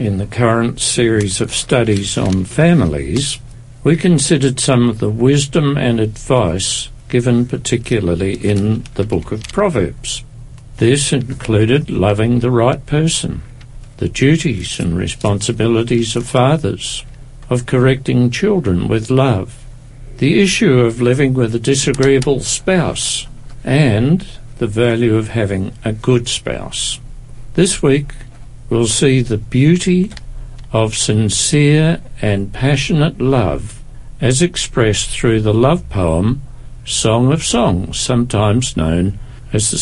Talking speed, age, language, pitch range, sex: 120 wpm, 60-79, English, 110-130 Hz, male